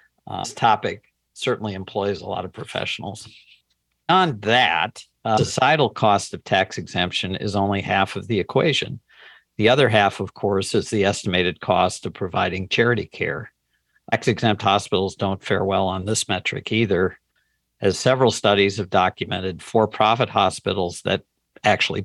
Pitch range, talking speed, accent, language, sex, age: 95-115 Hz, 145 wpm, American, English, male, 50-69